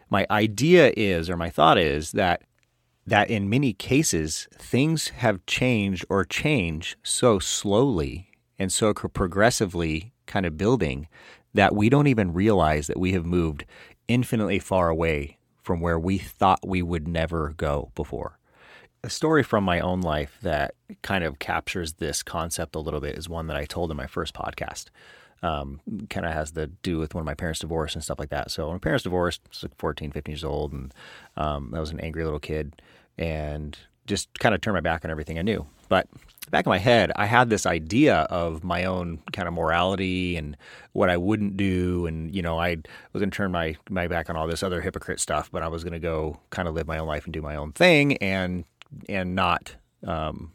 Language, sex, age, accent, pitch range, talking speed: English, male, 30-49, American, 80-100 Hz, 210 wpm